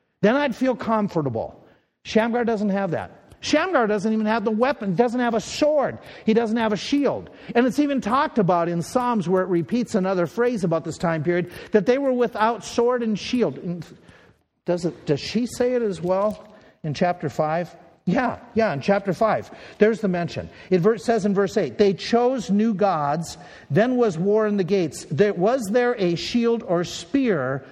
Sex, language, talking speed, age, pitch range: male, English, 190 wpm, 50-69, 185-240 Hz